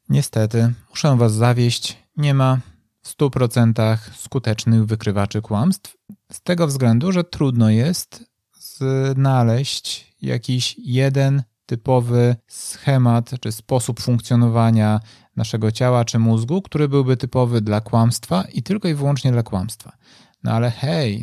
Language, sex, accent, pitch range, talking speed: Polish, male, native, 110-130 Hz, 120 wpm